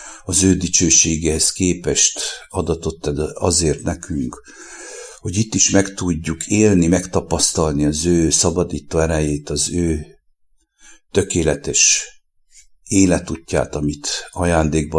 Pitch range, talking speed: 80-90 Hz, 90 wpm